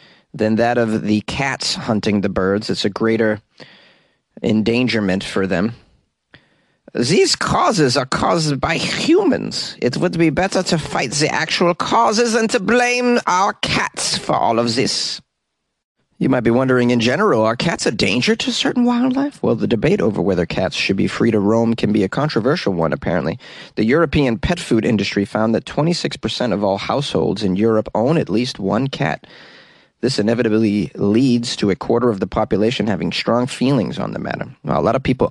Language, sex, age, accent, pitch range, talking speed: English, male, 30-49, American, 105-140 Hz, 180 wpm